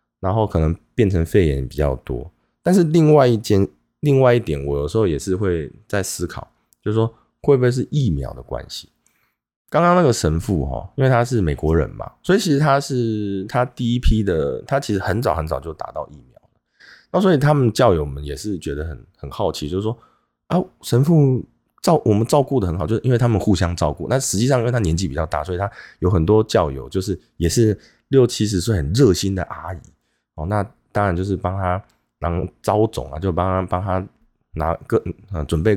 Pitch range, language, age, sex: 85-120 Hz, Chinese, 20-39, male